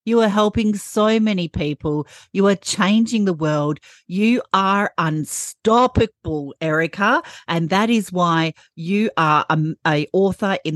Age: 40-59